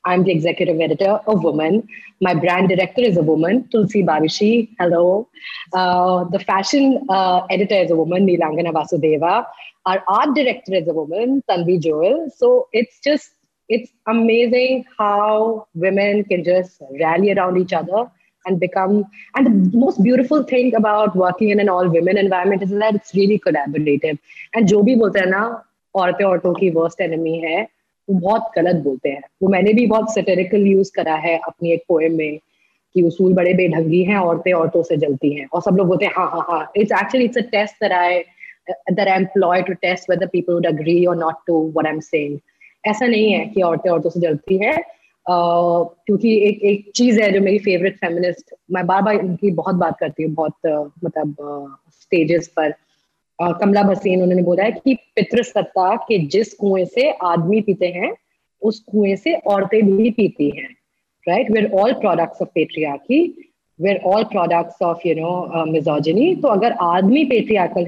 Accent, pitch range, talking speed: Indian, 170-215 Hz, 150 wpm